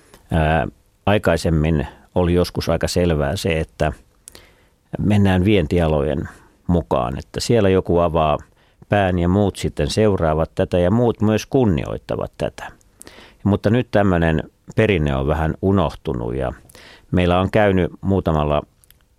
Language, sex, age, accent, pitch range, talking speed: Finnish, male, 50-69, native, 80-100 Hz, 115 wpm